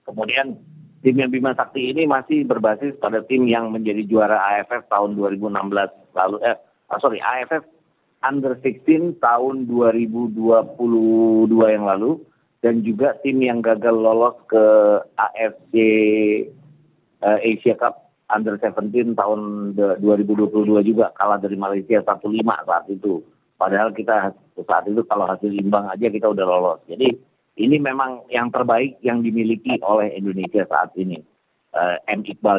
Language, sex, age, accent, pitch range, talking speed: Indonesian, male, 40-59, native, 105-125 Hz, 135 wpm